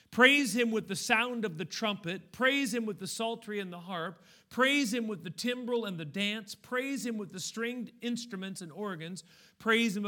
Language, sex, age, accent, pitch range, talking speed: English, male, 40-59, American, 180-230 Hz, 200 wpm